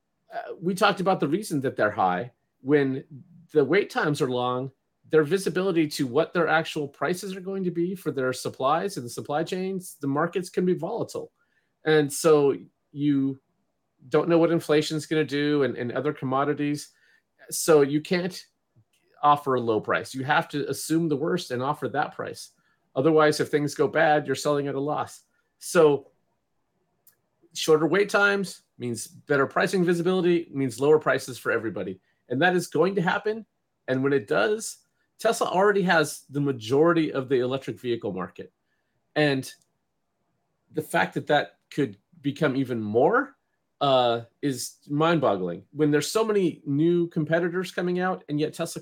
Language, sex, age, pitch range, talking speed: English, male, 30-49, 140-180 Hz, 165 wpm